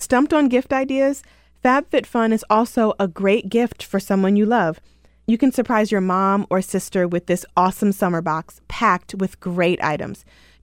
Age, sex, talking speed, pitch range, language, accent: 20-39, female, 175 wpm, 175-225 Hz, English, American